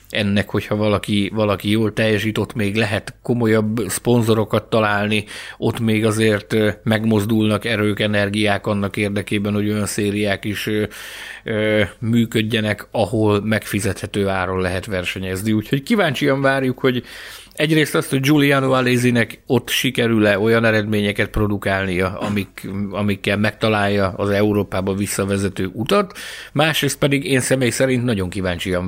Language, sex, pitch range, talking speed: Hungarian, male, 100-120 Hz, 120 wpm